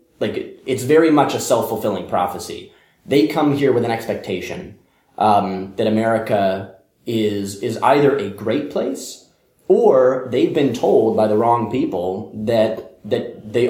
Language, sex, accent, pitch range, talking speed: English, male, American, 105-130 Hz, 145 wpm